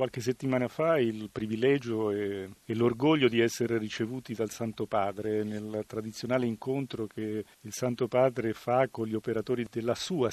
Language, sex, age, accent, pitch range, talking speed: Italian, male, 40-59, native, 115-140 Hz, 150 wpm